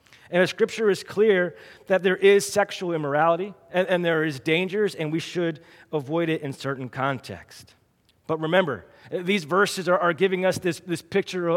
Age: 30-49